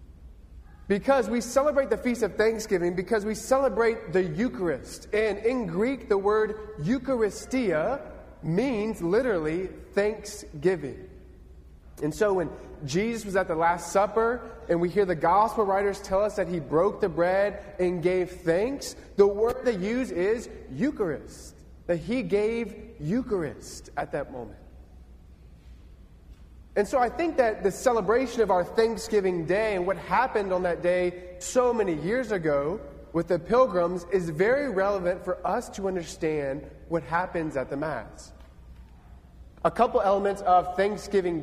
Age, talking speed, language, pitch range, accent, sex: 30-49, 145 wpm, English, 150-215 Hz, American, male